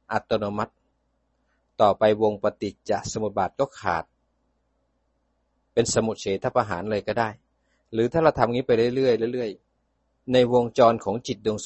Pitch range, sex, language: 105-140 Hz, male, Thai